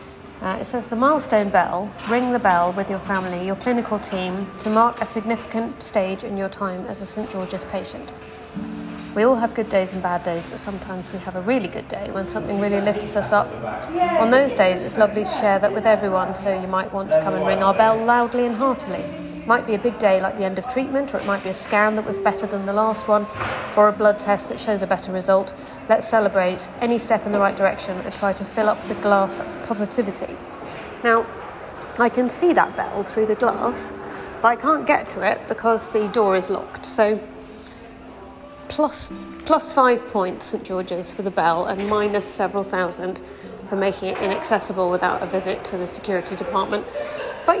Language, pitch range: English, 190-230 Hz